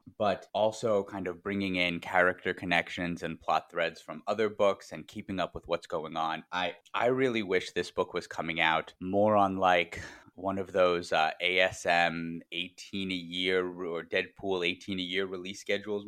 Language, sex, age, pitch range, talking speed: English, male, 30-49, 85-100 Hz, 180 wpm